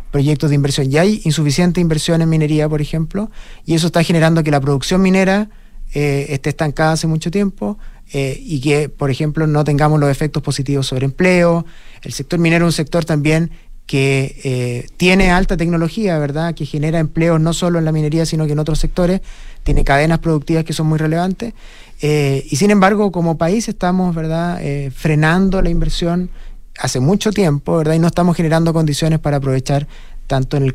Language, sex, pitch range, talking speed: Spanish, male, 145-175 Hz, 185 wpm